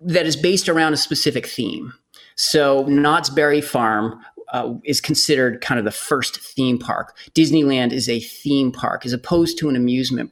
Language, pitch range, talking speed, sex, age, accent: English, 125-155 Hz, 175 wpm, male, 30-49, American